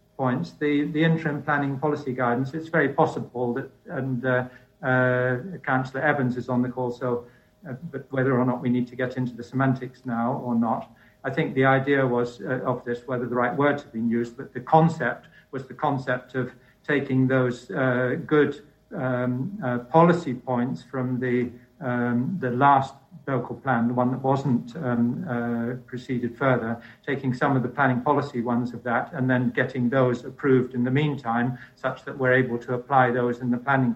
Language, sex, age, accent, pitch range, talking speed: English, male, 50-69, British, 120-135 Hz, 190 wpm